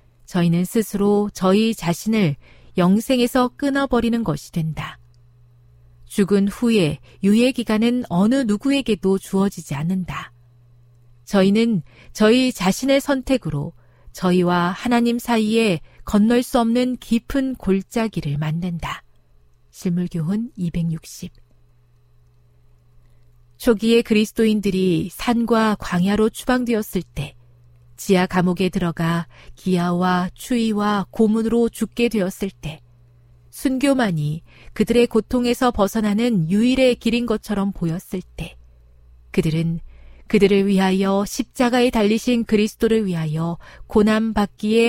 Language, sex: Korean, female